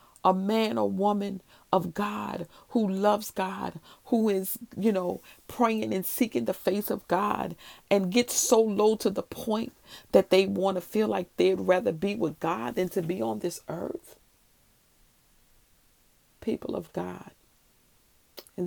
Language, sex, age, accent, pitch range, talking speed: English, female, 40-59, American, 180-215 Hz, 155 wpm